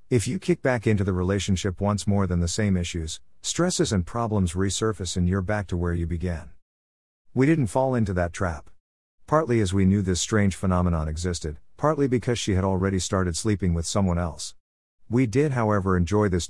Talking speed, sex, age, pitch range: 195 wpm, male, 50-69, 85-110 Hz